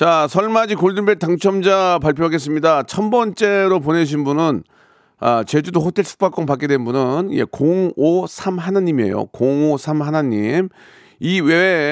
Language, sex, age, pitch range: Korean, male, 40-59, 140-190 Hz